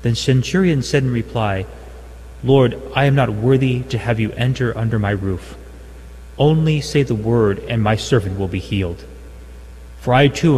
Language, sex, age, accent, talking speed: English, male, 30-49, American, 170 wpm